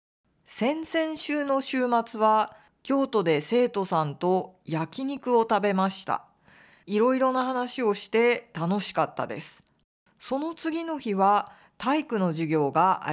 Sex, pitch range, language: female, 175-255 Hz, Japanese